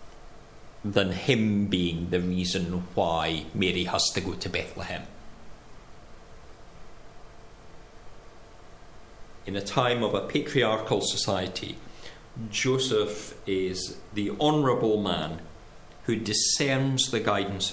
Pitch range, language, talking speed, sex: 90-115 Hz, English, 95 wpm, male